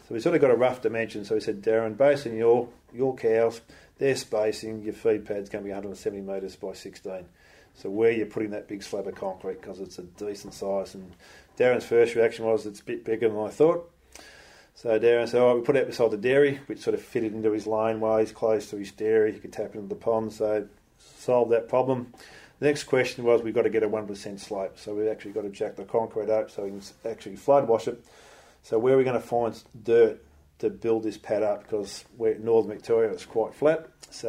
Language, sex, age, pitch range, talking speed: English, male, 40-59, 110-130 Hz, 240 wpm